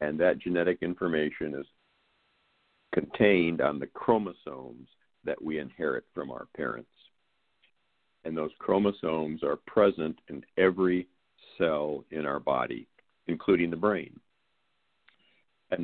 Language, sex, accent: English, male, American